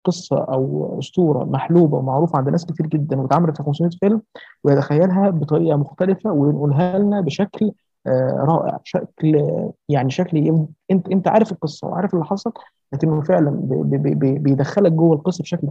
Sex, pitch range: male, 145-175 Hz